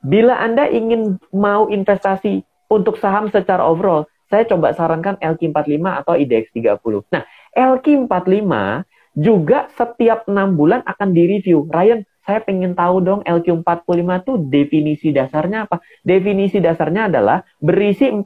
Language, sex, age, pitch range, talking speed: Indonesian, male, 30-49, 170-210 Hz, 120 wpm